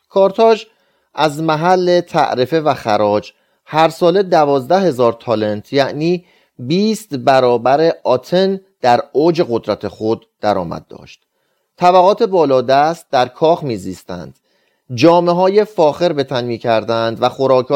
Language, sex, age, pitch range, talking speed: Persian, male, 30-49, 130-185 Hz, 115 wpm